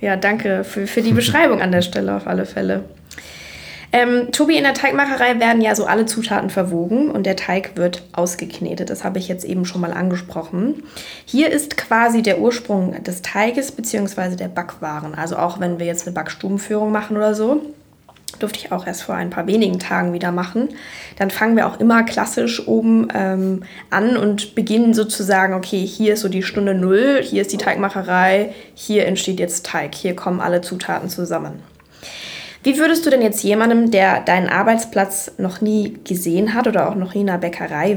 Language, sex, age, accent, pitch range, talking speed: German, female, 10-29, German, 180-225 Hz, 190 wpm